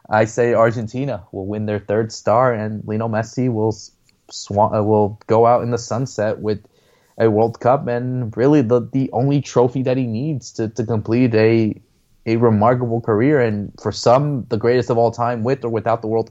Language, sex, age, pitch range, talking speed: English, male, 20-39, 105-125 Hz, 190 wpm